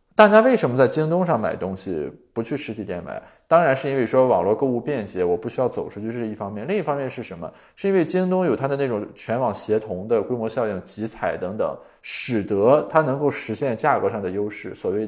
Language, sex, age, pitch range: Chinese, male, 20-39, 110-150 Hz